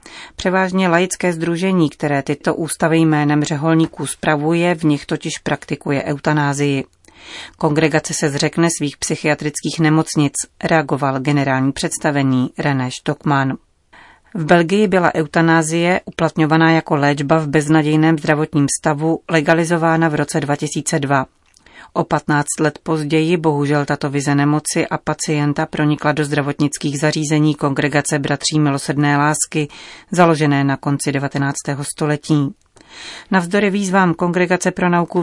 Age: 30-49